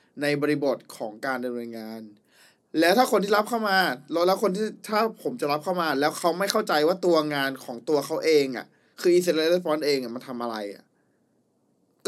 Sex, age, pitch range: male, 20-39, 125-180 Hz